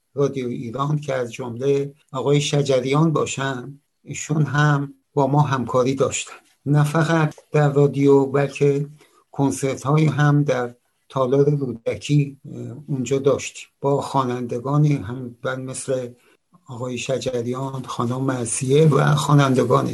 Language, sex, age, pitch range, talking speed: Persian, male, 60-79, 125-145 Hz, 115 wpm